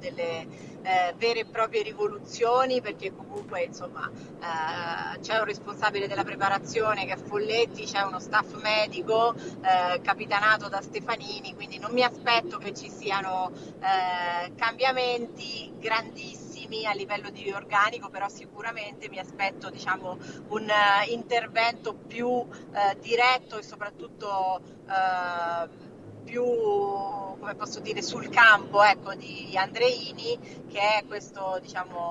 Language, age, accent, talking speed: Italian, 30-49, native, 120 wpm